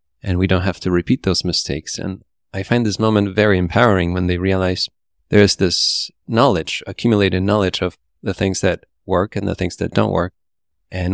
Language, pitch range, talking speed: English, 90-105 Hz, 195 wpm